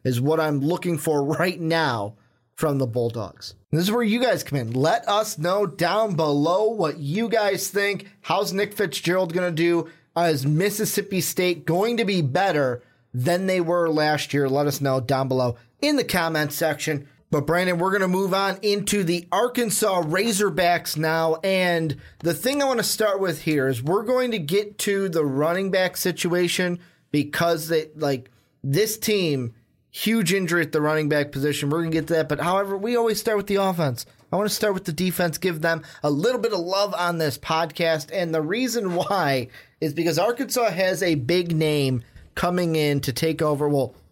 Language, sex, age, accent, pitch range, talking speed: English, male, 30-49, American, 145-190 Hz, 195 wpm